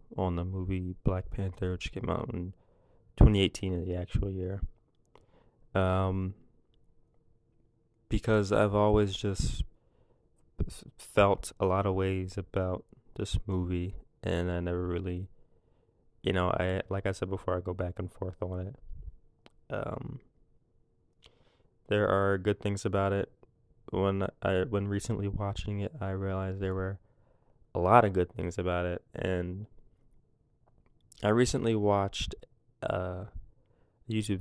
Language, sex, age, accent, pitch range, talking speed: English, male, 20-39, American, 90-105 Hz, 130 wpm